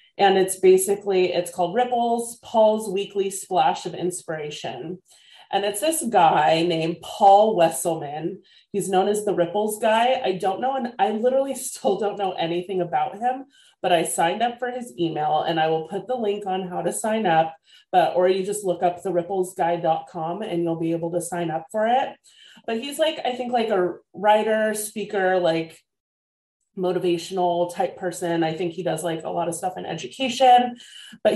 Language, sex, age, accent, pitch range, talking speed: English, female, 30-49, American, 170-210 Hz, 180 wpm